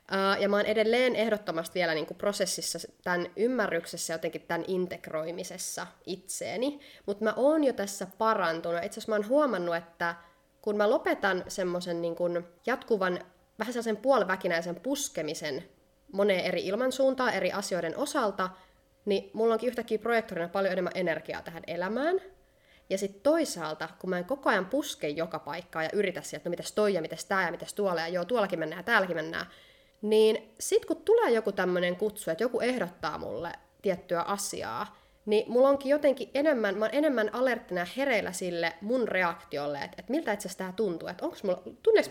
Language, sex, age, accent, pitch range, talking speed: Finnish, female, 20-39, native, 170-225 Hz, 165 wpm